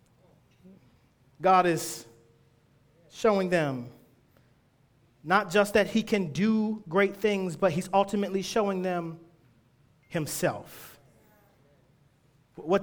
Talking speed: 90 wpm